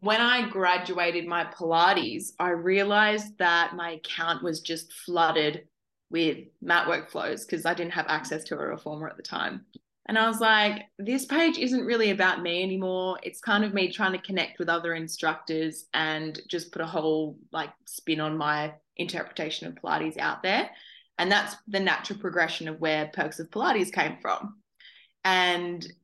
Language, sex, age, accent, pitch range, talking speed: English, female, 20-39, Australian, 165-210 Hz, 175 wpm